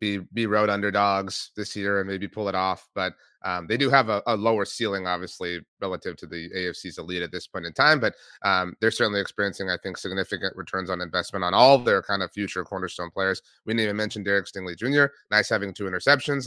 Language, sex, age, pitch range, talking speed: English, male, 30-49, 105-145 Hz, 225 wpm